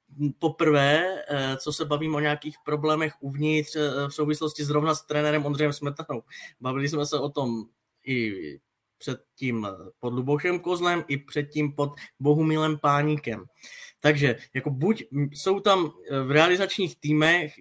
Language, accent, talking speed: Czech, native, 125 wpm